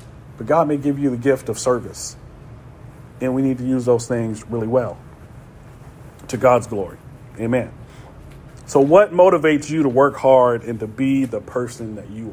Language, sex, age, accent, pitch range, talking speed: English, male, 40-59, American, 120-145 Hz, 175 wpm